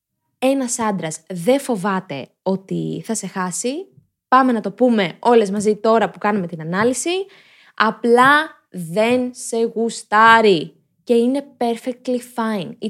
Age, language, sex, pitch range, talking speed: 20-39, Greek, female, 195-250 Hz, 125 wpm